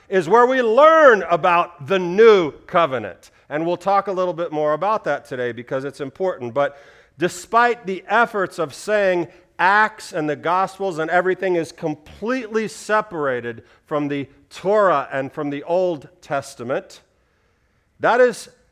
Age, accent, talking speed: 40-59, American, 145 wpm